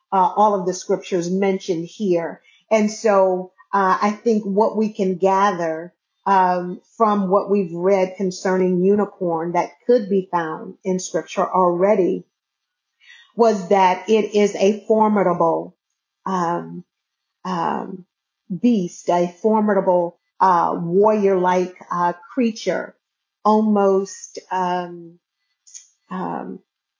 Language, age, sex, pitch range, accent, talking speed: English, 40-59, female, 175-205 Hz, American, 110 wpm